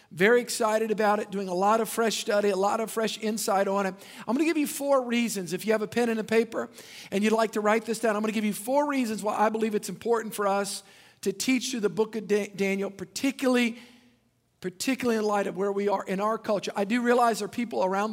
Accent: American